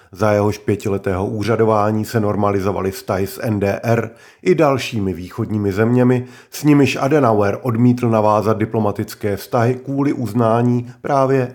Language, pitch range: Czech, 105-125 Hz